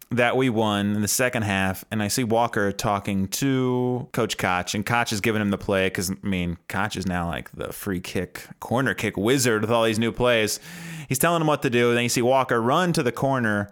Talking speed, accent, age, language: 240 wpm, American, 20-39, English